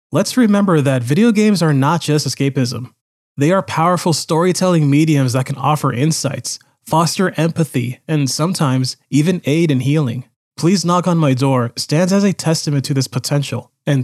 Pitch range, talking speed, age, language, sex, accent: 130-160 Hz, 165 wpm, 20-39, English, male, American